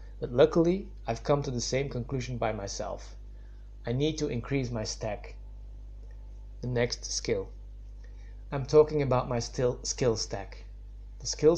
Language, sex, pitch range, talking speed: English, male, 110-135 Hz, 145 wpm